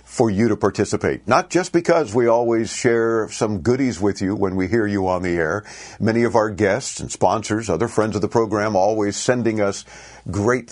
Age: 50-69